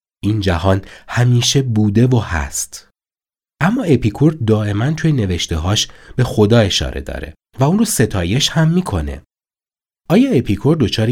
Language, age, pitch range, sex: Persian, 30-49, 90-125 Hz, male